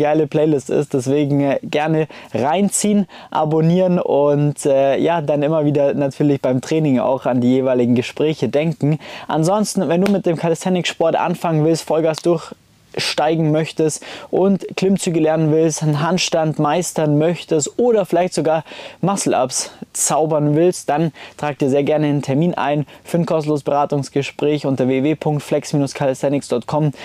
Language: German